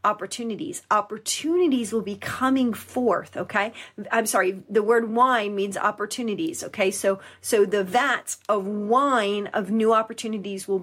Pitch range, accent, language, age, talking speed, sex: 210-260 Hz, American, English, 30-49, 140 wpm, female